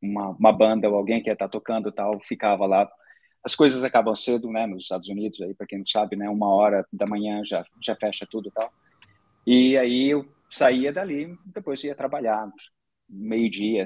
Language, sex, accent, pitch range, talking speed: Portuguese, male, Brazilian, 105-140 Hz, 195 wpm